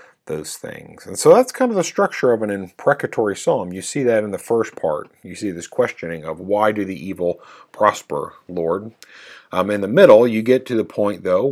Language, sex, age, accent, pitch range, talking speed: English, male, 40-59, American, 85-105 Hz, 215 wpm